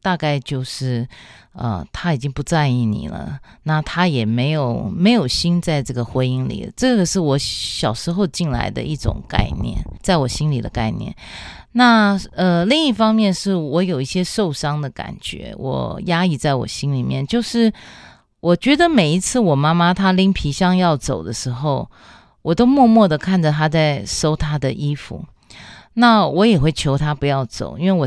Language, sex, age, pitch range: Chinese, female, 30-49, 130-190 Hz